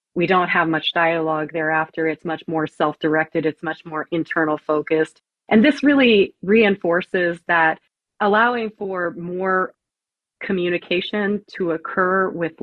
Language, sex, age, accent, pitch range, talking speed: English, female, 30-49, American, 165-195 Hz, 130 wpm